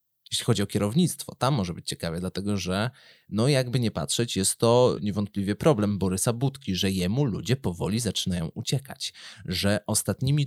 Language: Polish